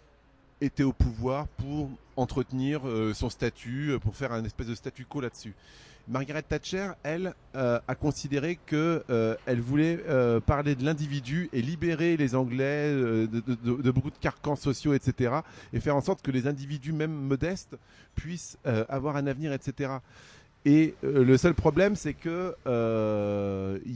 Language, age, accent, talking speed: French, 30-49, French, 160 wpm